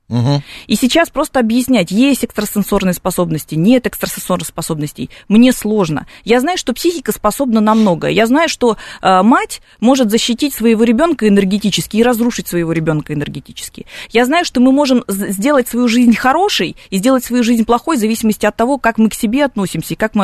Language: Russian